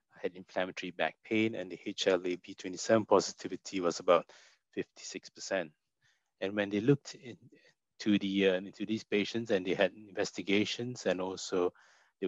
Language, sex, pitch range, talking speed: English, male, 95-110 Hz, 125 wpm